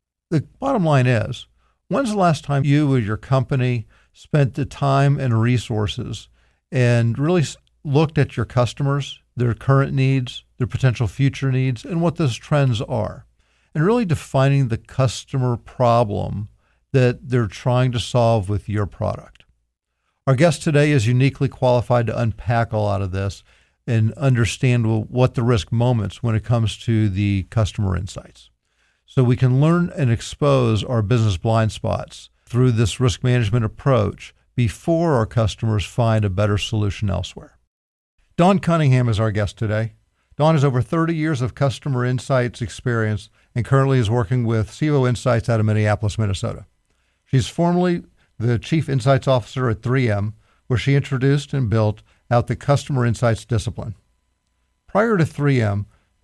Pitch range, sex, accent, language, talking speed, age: 110-135 Hz, male, American, English, 155 wpm, 50-69